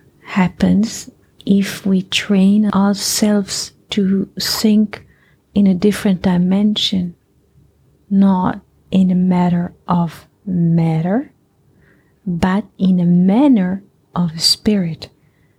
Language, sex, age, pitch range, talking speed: English, female, 30-49, 185-210 Hz, 90 wpm